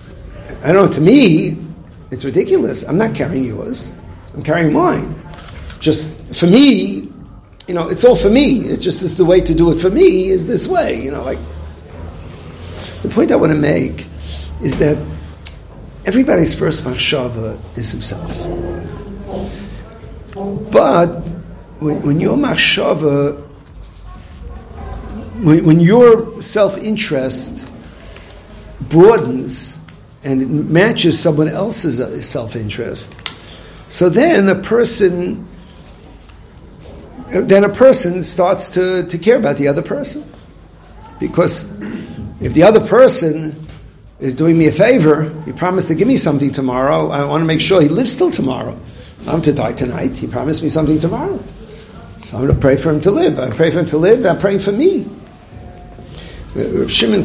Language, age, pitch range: English, 50-69, 115-185 Hz